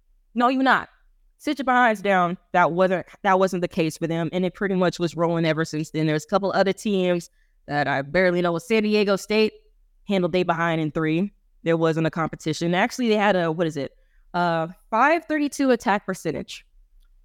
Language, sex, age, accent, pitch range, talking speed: English, female, 20-39, American, 160-210 Hz, 190 wpm